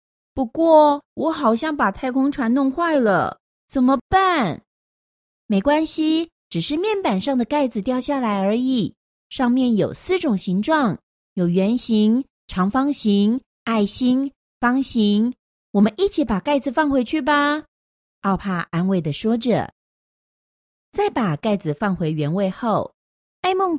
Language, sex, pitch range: Chinese, female, 200-290 Hz